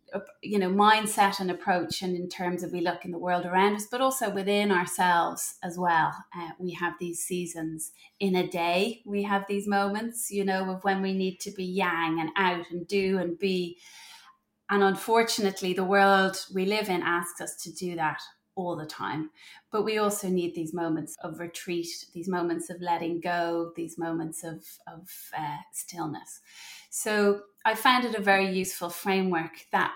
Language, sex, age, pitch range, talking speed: English, female, 30-49, 175-205 Hz, 185 wpm